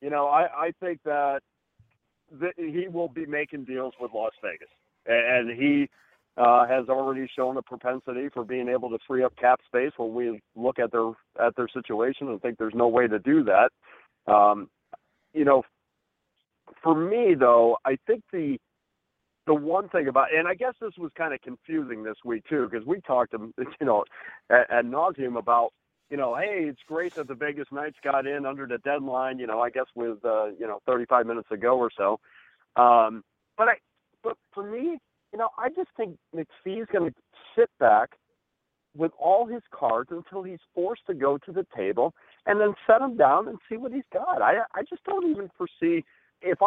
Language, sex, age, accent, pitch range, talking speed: English, male, 50-69, American, 120-180 Hz, 195 wpm